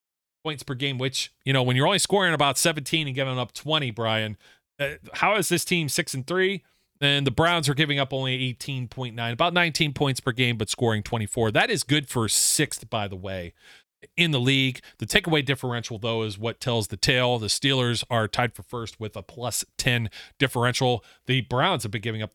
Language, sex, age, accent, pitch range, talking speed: English, male, 40-59, American, 110-140 Hz, 210 wpm